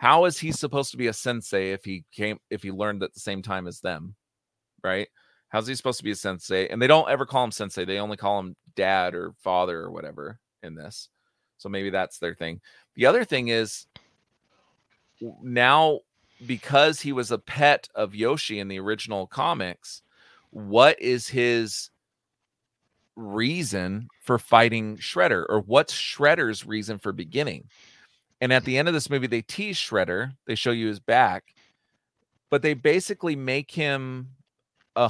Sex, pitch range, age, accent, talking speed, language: male, 105-130 Hz, 40-59, American, 175 wpm, English